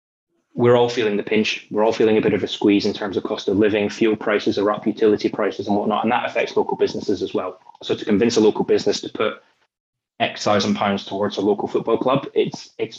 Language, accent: English, British